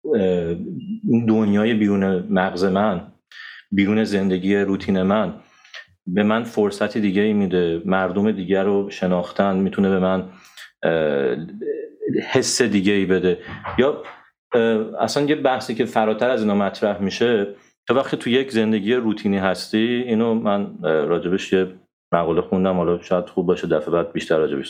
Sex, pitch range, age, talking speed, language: male, 95-115 Hz, 40-59, 130 wpm, Persian